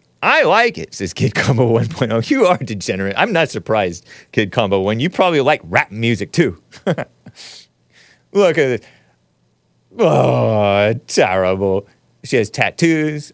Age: 40-59